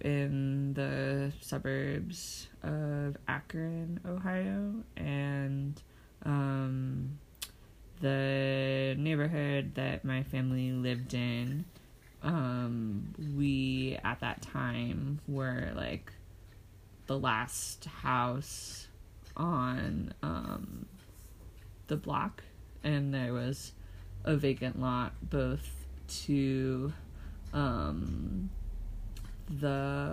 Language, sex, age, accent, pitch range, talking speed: English, female, 20-39, American, 110-145 Hz, 80 wpm